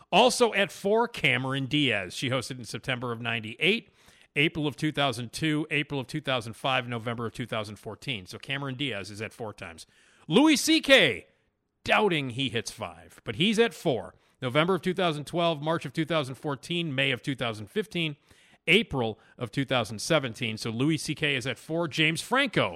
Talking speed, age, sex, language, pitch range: 150 wpm, 40-59, male, English, 120-170 Hz